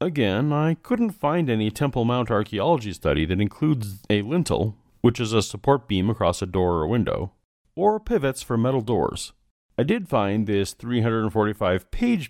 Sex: male